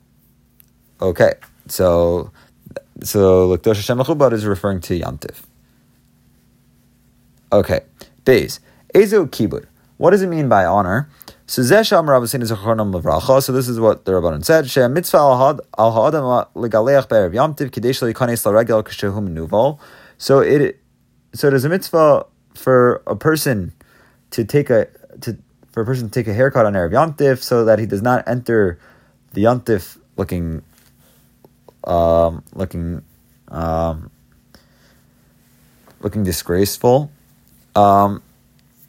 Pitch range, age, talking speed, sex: 100-135 Hz, 30-49, 90 wpm, male